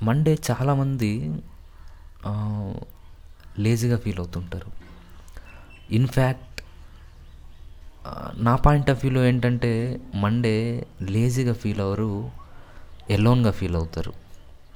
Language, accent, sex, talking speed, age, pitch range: Telugu, native, male, 75 wpm, 20-39, 85-110 Hz